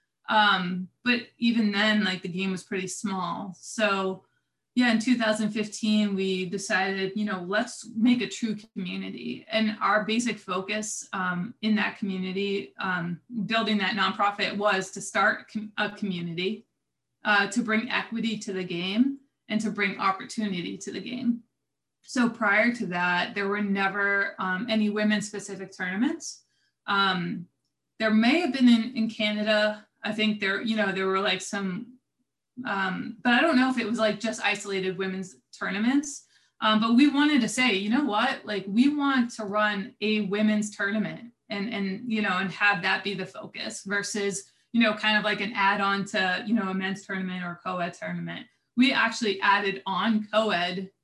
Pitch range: 190-225 Hz